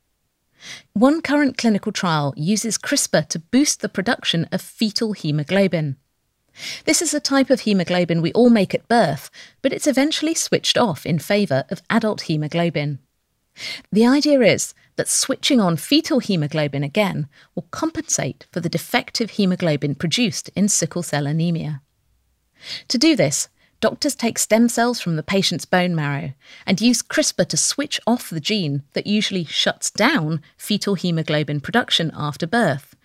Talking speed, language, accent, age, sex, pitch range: 150 wpm, English, British, 40-59, female, 155-235 Hz